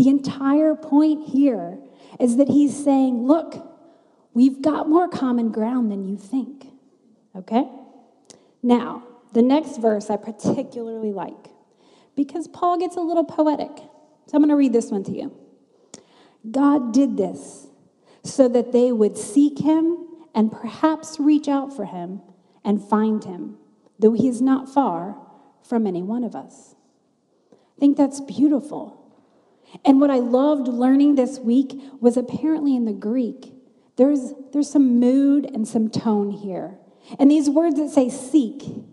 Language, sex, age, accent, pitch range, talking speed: English, female, 30-49, American, 230-285 Hz, 150 wpm